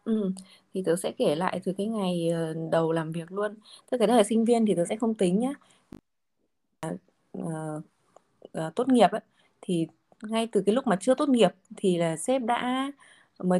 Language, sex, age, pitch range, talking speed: Vietnamese, female, 20-39, 190-255 Hz, 190 wpm